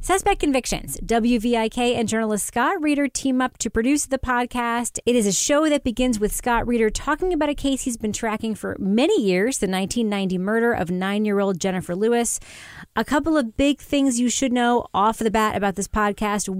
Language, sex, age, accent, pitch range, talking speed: English, female, 30-49, American, 195-240 Hz, 200 wpm